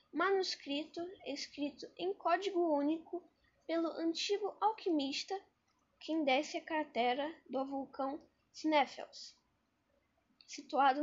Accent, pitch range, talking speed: Brazilian, 285-360 Hz, 85 wpm